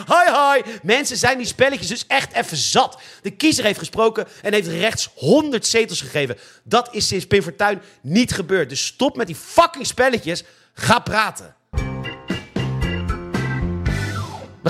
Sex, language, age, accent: male, Dutch, 40-59, Dutch